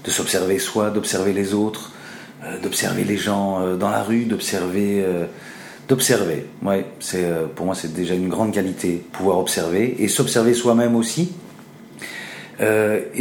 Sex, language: male, French